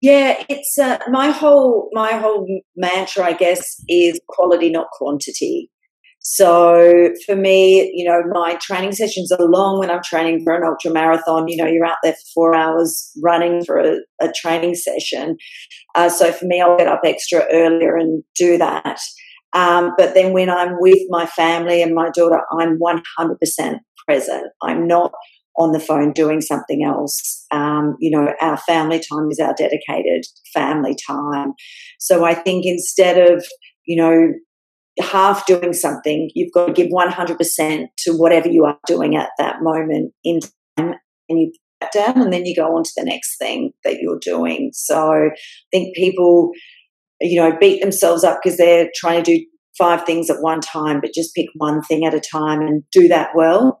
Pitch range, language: 165-190 Hz, English